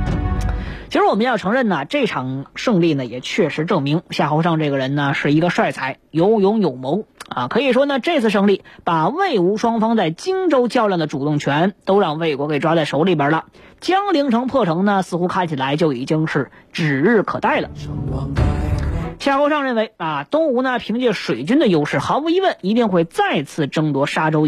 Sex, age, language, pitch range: female, 20-39, Chinese, 155-260 Hz